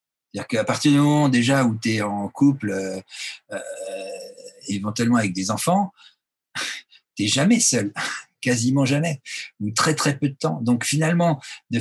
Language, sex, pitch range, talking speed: French, male, 115-155 Hz, 165 wpm